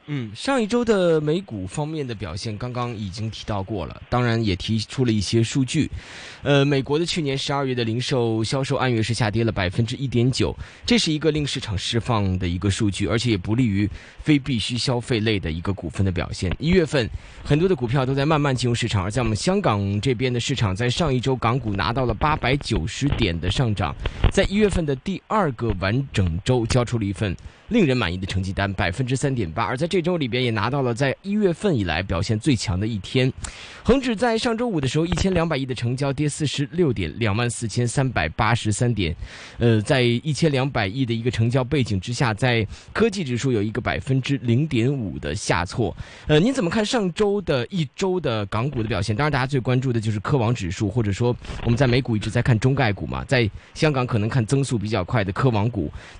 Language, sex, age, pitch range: Chinese, male, 20-39, 105-140 Hz